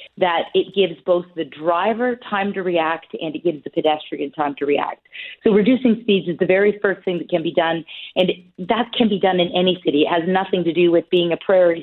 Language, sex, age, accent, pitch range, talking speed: English, female, 40-59, American, 170-205 Hz, 235 wpm